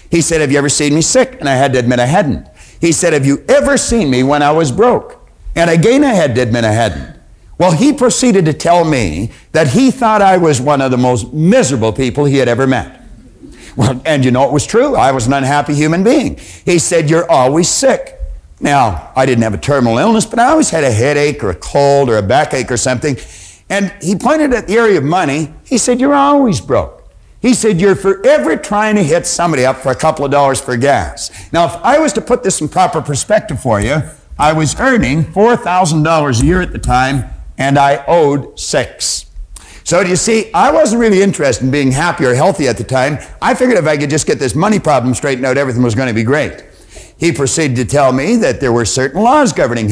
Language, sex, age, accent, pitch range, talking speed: English, male, 60-79, American, 130-190 Hz, 230 wpm